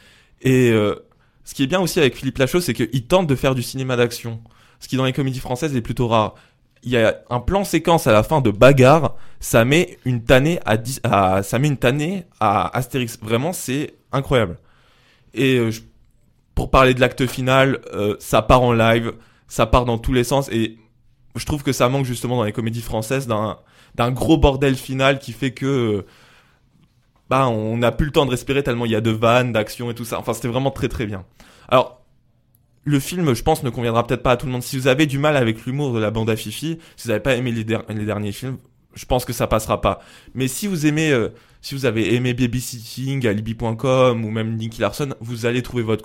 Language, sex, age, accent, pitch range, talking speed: French, male, 20-39, French, 115-135 Hz, 230 wpm